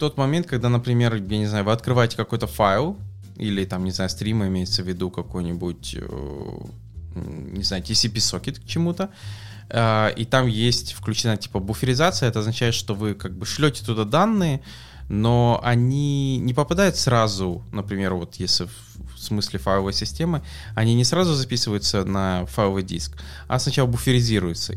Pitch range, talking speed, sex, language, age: 95-115 Hz, 150 wpm, male, English, 20-39